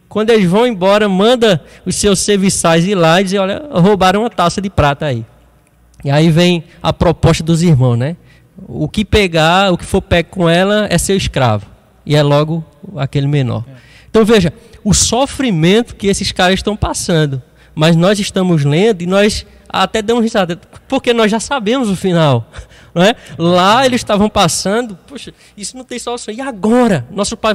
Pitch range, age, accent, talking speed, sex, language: 155-205 Hz, 20-39, Brazilian, 185 wpm, male, Portuguese